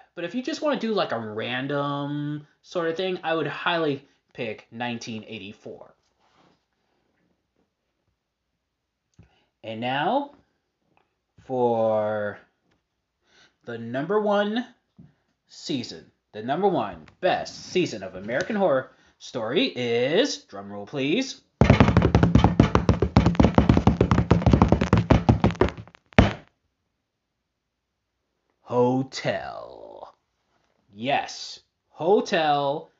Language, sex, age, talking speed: English, male, 20-39, 75 wpm